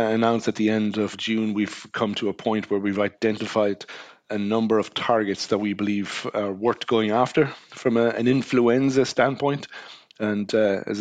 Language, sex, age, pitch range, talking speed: English, male, 30-49, 110-120 Hz, 170 wpm